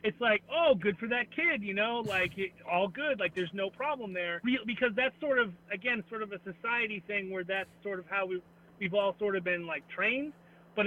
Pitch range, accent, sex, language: 180-215 Hz, American, male, English